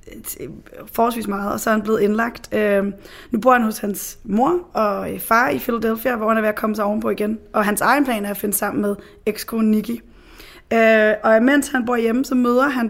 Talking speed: 215 wpm